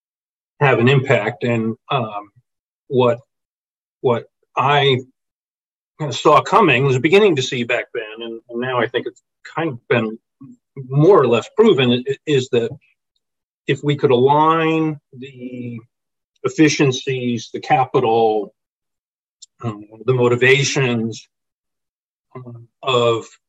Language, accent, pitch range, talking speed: English, American, 115-140 Hz, 110 wpm